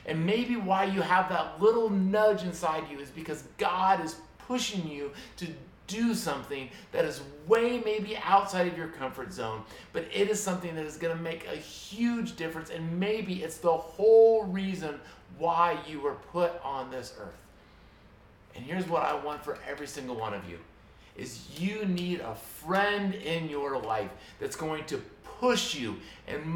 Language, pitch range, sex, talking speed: English, 130-190 Hz, male, 175 wpm